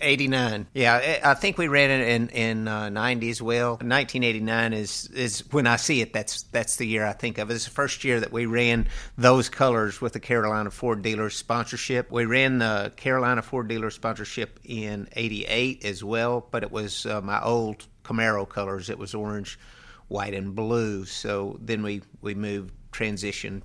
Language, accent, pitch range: English, American, 105-120 Hz